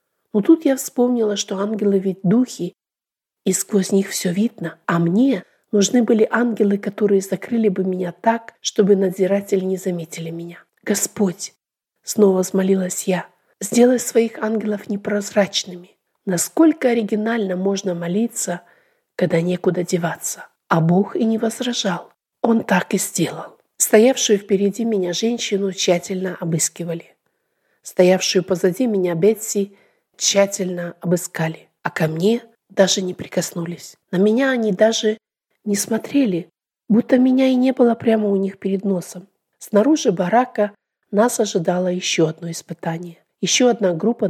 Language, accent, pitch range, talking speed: Russian, native, 180-220 Hz, 135 wpm